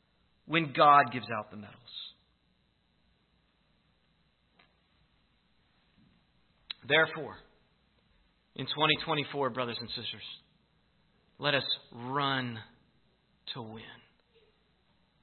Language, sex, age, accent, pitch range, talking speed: English, male, 40-59, American, 140-190 Hz, 65 wpm